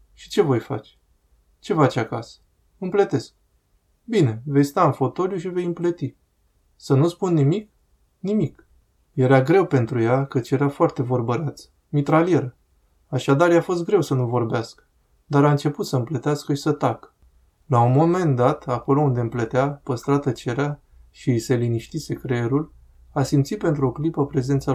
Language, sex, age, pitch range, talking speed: Romanian, male, 20-39, 115-150 Hz, 155 wpm